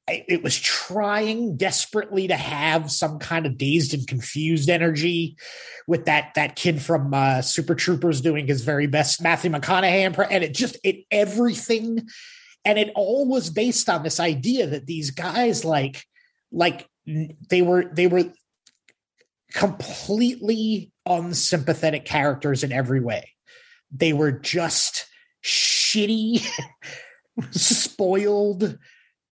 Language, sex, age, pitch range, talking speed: English, male, 30-49, 145-205 Hz, 125 wpm